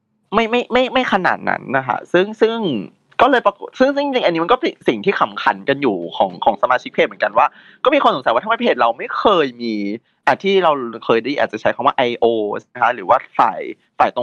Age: 20-39